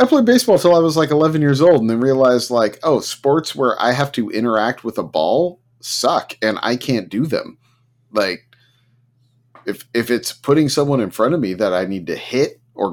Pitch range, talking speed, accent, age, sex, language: 120-150 Hz, 215 wpm, American, 30-49, male, English